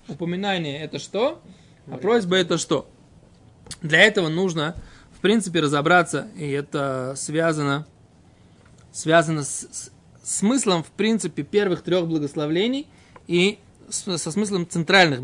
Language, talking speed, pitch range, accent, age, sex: Russian, 120 wpm, 155-205 Hz, native, 20-39, male